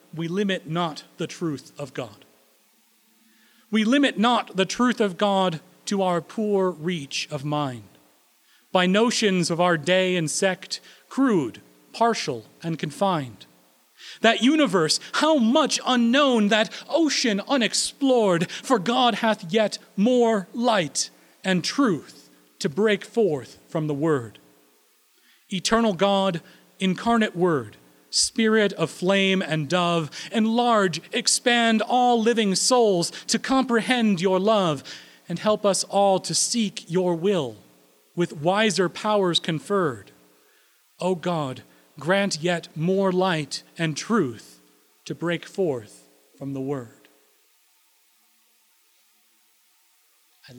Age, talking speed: 40-59, 115 wpm